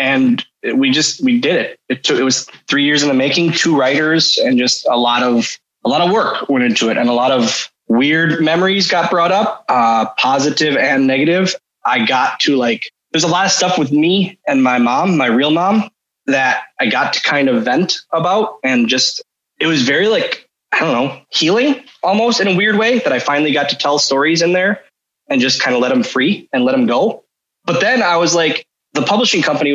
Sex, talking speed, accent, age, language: male, 220 wpm, American, 20-39, English